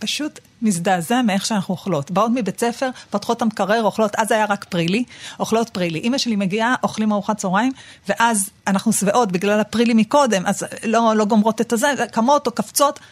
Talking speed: 180 wpm